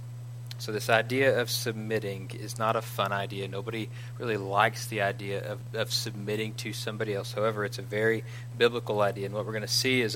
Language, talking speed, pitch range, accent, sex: English, 200 wpm, 115-120 Hz, American, male